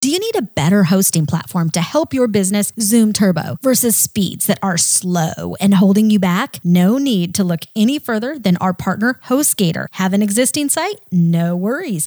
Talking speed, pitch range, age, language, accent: 190 wpm, 175-235 Hz, 30-49, English, American